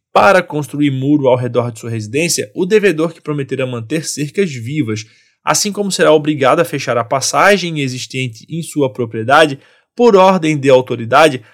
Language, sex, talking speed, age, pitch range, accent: Portuguese, male, 160 wpm, 20-39, 130-175 Hz, Brazilian